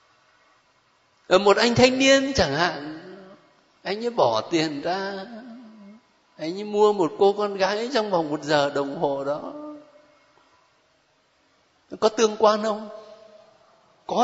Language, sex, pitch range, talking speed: Vietnamese, male, 210-320 Hz, 130 wpm